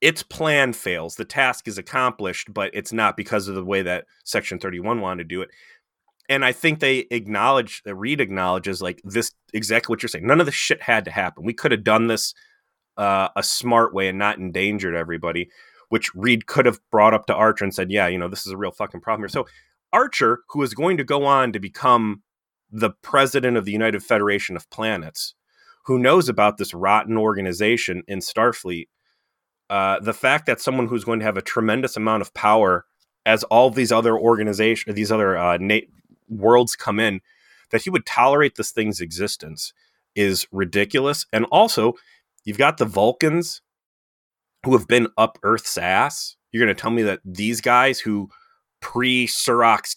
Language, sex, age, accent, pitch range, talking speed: English, male, 30-49, American, 95-120 Hz, 190 wpm